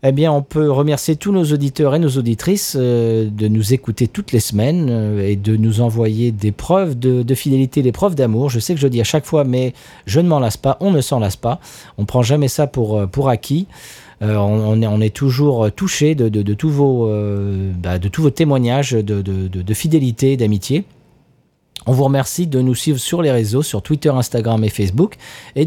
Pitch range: 110-150 Hz